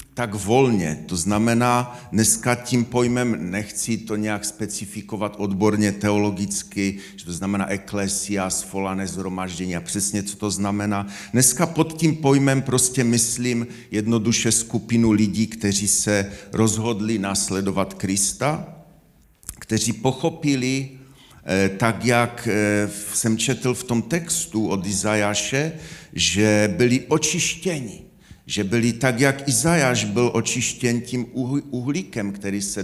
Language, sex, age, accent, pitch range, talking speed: Czech, male, 40-59, native, 105-130 Hz, 115 wpm